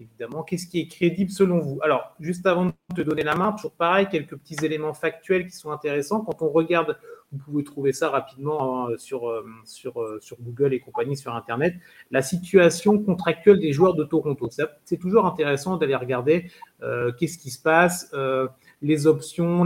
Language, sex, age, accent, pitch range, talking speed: French, male, 30-49, French, 145-185 Hz, 180 wpm